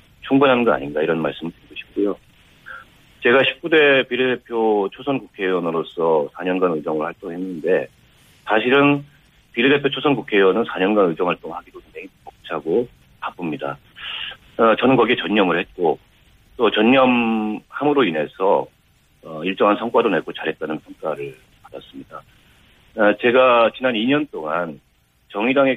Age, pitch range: 40-59, 90-135 Hz